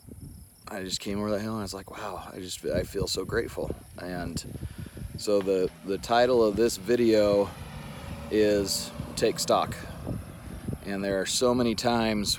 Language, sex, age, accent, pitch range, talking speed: English, male, 30-49, American, 95-110 Hz, 165 wpm